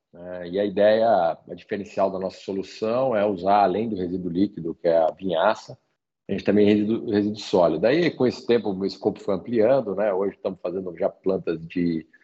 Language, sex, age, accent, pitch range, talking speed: Portuguese, male, 40-59, Brazilian, 85-100 Hz, 205 wpm